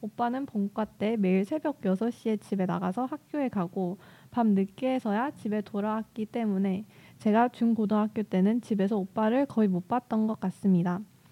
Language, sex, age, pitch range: Korean, female, 20-39, 200-250 Hz